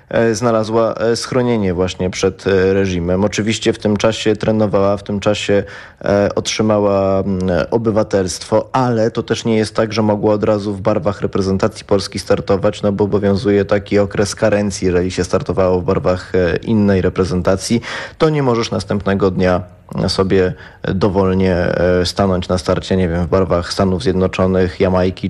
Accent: native